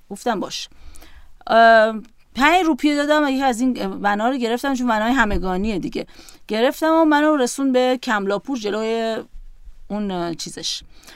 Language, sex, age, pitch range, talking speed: Persian, female, 30-49, 195-275 Hz, 130 wpm